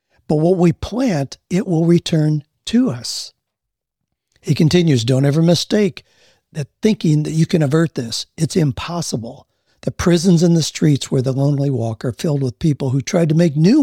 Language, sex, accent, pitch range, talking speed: English, male, American, 135-170 Hz, 180 wpm